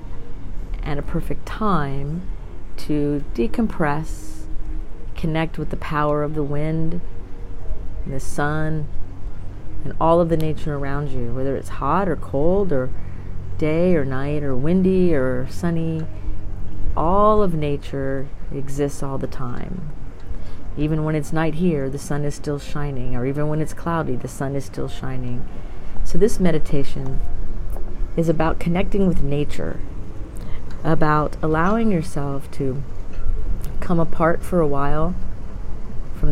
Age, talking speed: 40-59, 130 wpm